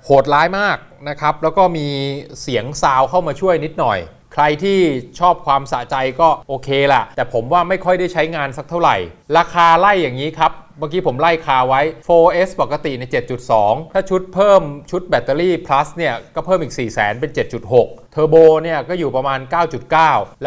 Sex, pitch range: male, 130-170 Hz